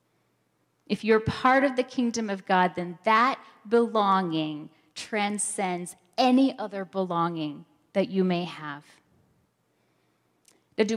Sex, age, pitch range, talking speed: female, 10-29, 180-245 Hz, 115 wpm